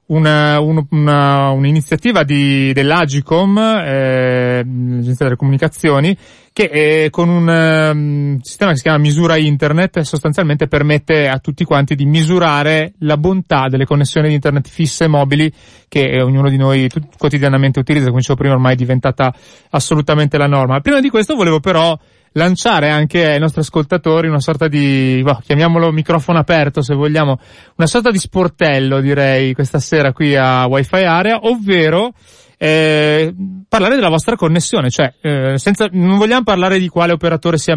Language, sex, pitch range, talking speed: Italian, male, 140-170 Hz, 145 wpm